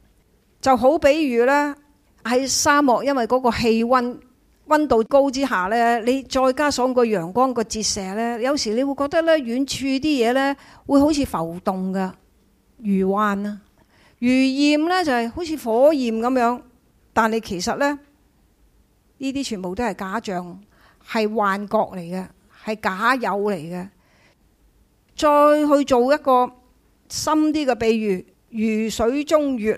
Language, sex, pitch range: Chinese, female, 220-280 Hz